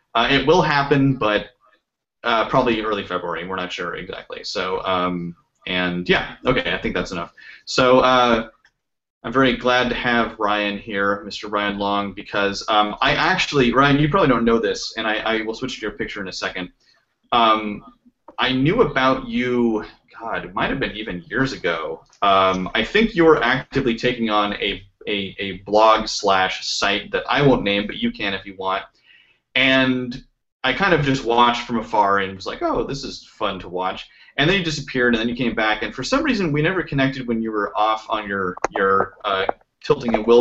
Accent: American